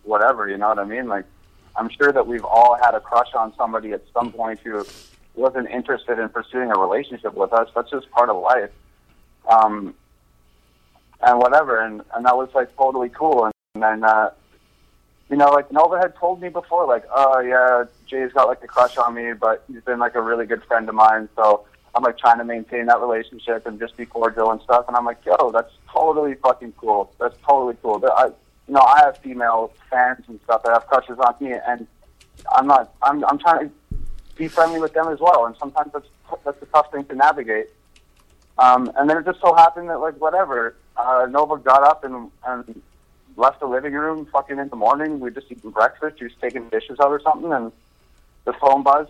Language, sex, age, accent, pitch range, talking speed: English, male, 20-39, American, 115-145 Hz, 220 wpm